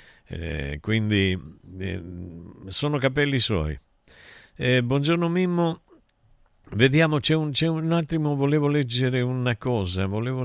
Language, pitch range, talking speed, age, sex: Italian, 100-130 Hz, 115 wpm, 50-69, male